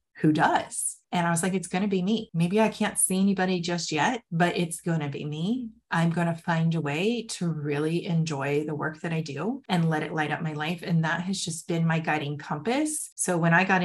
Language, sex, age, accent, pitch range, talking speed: English, female, 30-49, American, 165-210 Hz, 245 wpm